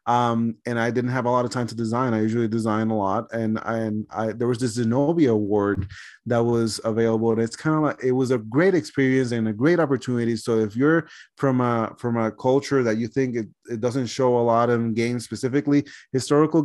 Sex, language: male, English